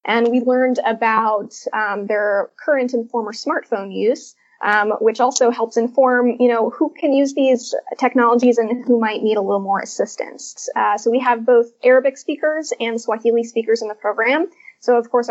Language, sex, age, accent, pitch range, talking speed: English, female, 20-39, American, 220-265 Hz, 185 wpm